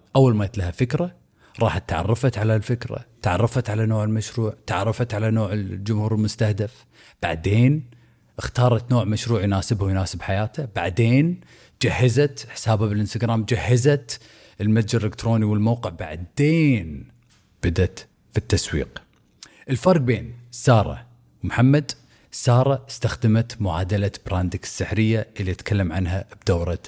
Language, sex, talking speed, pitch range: Arabic, male, 110 wpm, 100-120 Hz